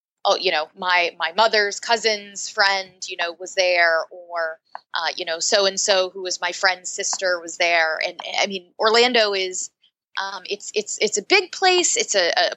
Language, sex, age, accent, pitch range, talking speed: English, female, 20-39, American, 180-220 Hz, 190 wpm